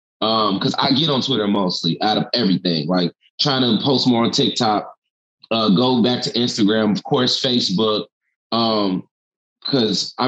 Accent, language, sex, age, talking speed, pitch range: American, English, male, 20-39, 165 wpm, 105-130 Hz